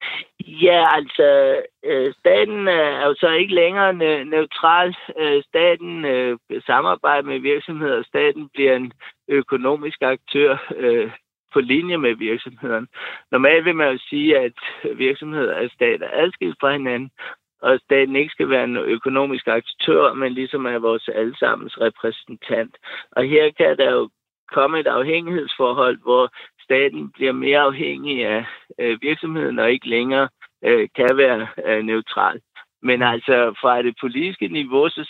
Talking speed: 135 wpm